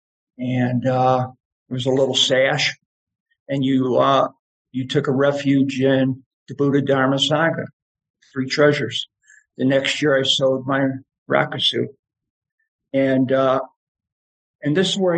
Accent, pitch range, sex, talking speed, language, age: American, 125-140 Hz, male, 135 wpm, English, 50-69